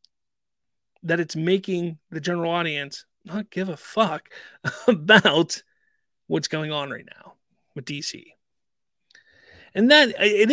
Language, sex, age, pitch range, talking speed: English, male, 30-49, 155-210 Hz, 120 wpm